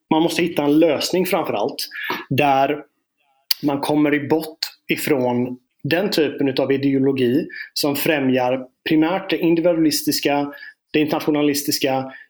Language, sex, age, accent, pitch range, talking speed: Swedish, male, 30-49, native, 130-155 Hz, 110 wpm